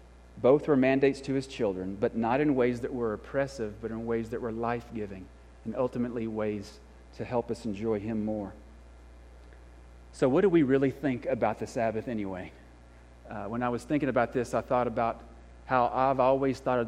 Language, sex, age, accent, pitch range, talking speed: English, male, 40-59, American, 95-135 Hz, 190 wpm